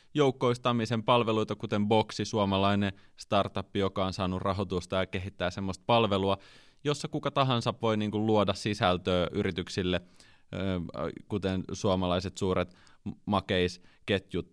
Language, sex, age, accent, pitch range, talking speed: Finnish, male, 30-49, native, 90-110 Hz, 105 wpm